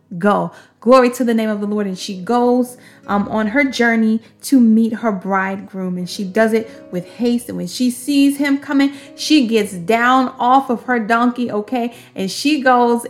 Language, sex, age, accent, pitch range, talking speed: English, female, 30-49, American, 220-260 Hz, 190 wpm